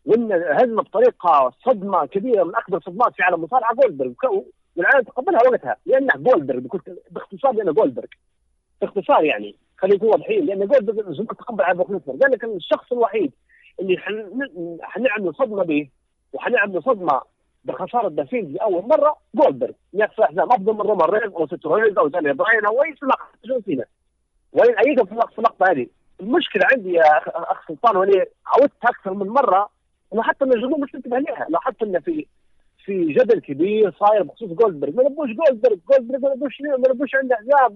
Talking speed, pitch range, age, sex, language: 160 wpm, 195-295 Hz, 50-69, male, Arabic